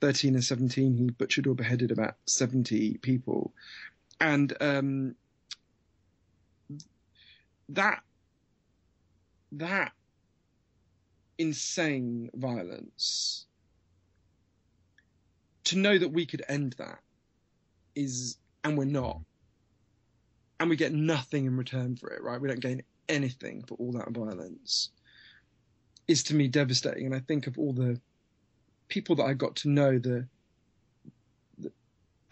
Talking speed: 115 wpm